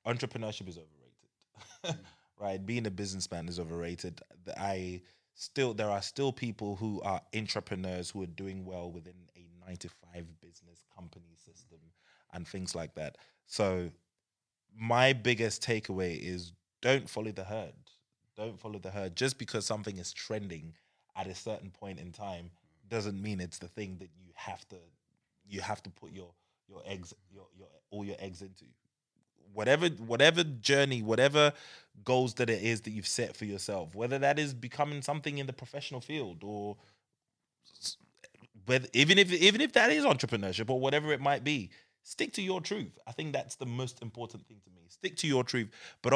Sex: male